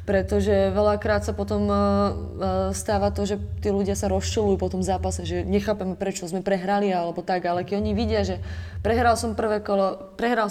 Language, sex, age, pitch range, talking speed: Slovak, female, 20-39, 175-200 Hz, 175 wpm